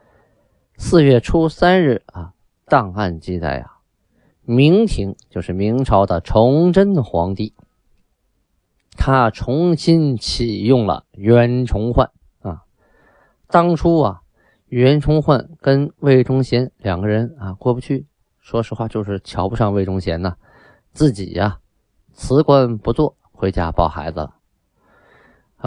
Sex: male